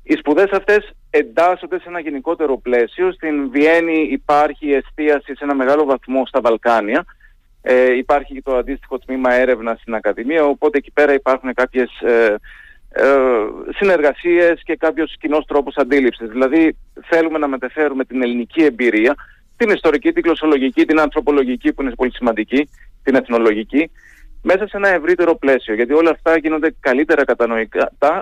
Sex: male